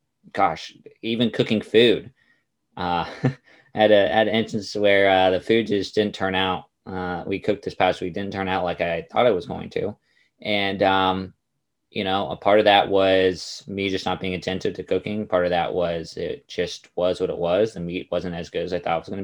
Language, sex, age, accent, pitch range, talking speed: English, male, 20-39, American, 90-105 Hz, 220 wpm